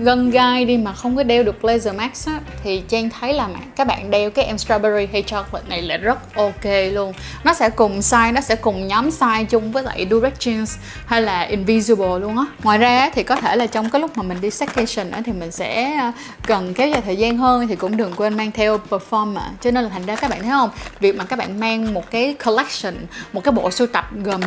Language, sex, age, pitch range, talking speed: Vietnamese, female, 20-39, 210-250 Hz, 245 wpm